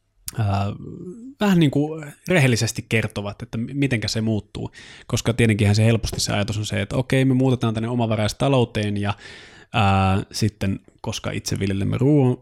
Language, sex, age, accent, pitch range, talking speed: Finnish, male, 20-39, native, 100-120 Hz, 145 wpm